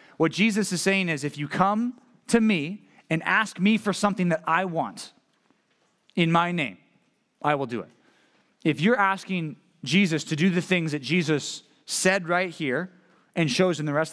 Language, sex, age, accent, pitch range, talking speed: English, male, 30-49, American, 150-185 Hz, 185 wpm